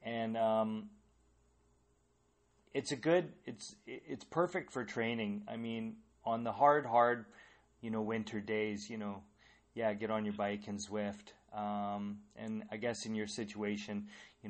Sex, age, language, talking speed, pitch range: male, 30-49, English, 155 wpm, 105-135 Hz